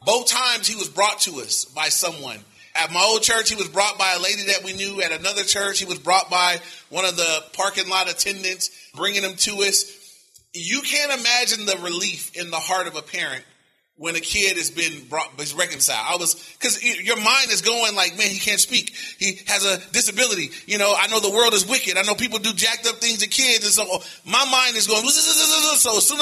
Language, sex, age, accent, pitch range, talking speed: English, male, 30-49, American, 175-215 Hz, 230 wpm